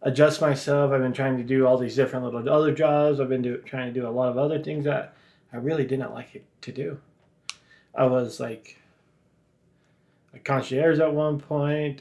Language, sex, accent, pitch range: English, male, American, 125-150 Hz